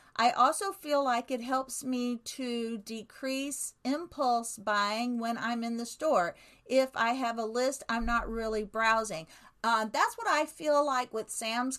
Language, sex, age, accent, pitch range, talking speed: English, female, 50-69, American, 220-265 Hz, 170 wpm